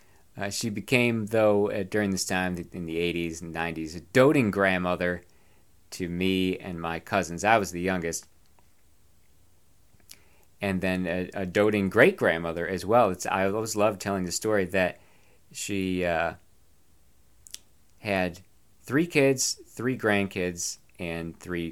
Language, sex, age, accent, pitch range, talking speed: English, male, 40-59, American, 85-105 Hz, 140 wpm